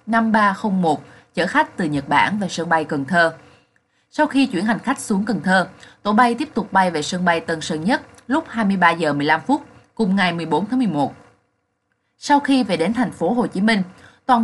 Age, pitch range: 20-39, 165-235 Hz